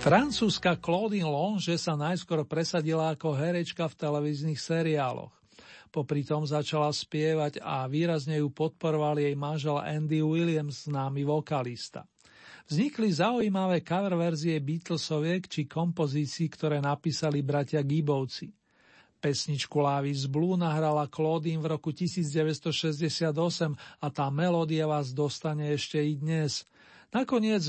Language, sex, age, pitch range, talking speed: Slovak, male, 40-59, 145-165 Hz, 115 wpm